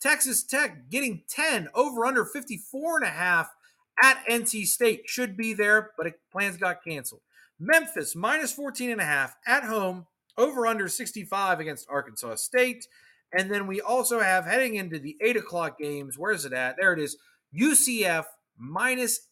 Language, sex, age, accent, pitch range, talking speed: English, male, 30-49, American, 155-250 Hz, 170 wpm